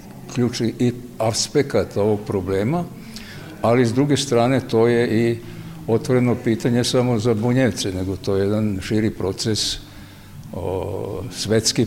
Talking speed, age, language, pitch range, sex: 125 wpm, 60-79, Croatian, 100-115 Hz, male